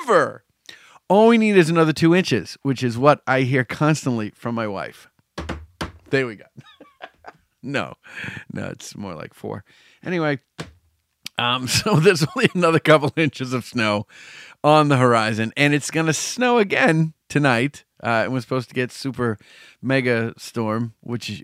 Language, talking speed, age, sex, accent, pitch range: English, 155 wpm, 40-59, male, American, 115-155 Hz